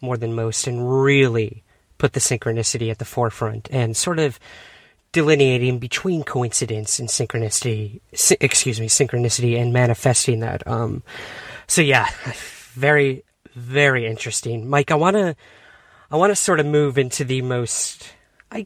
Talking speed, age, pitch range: 145 wpm, 30-49, 115-145 Hz